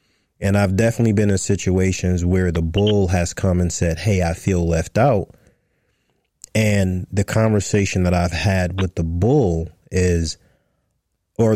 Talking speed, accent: 150 wpm, American